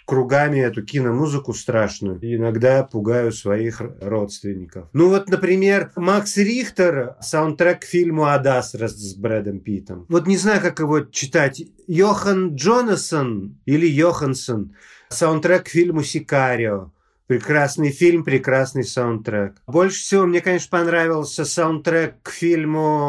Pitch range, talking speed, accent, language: 125-175 Hz, 115 wpm, native, Russian